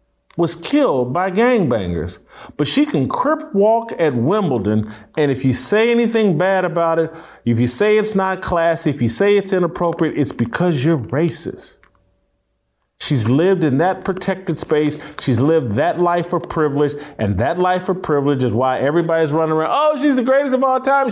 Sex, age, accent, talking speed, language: male, 40-59, American, 180 wpm, English